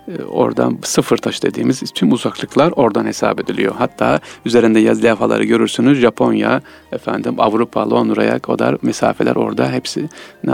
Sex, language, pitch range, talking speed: male, Turkish, 110-155 Hz, 125 wpm